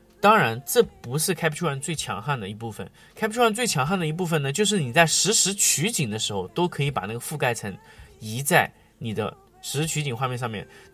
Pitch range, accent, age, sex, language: 125-190 Hz, native, 20-39, male, Chinese